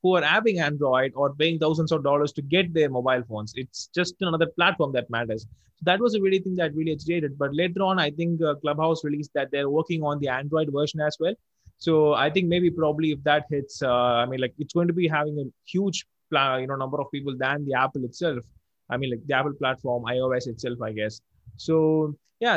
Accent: Indian